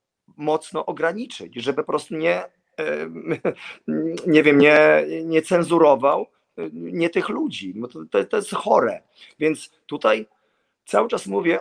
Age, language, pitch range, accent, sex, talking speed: 40-59, Polish, 135-170 Hz, native, male, 125 wpm